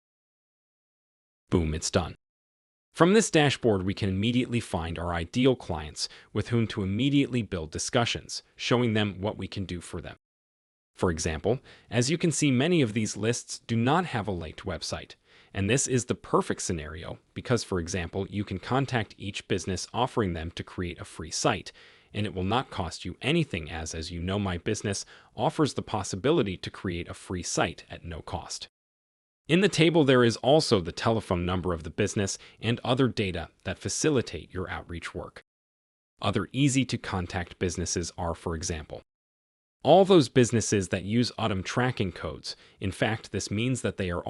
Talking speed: 175 wpm